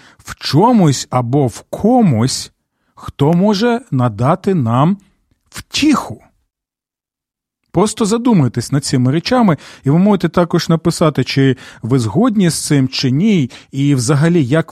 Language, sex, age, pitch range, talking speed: Ukrainian, male, 40-59, 125-170 Hz, 120 wpm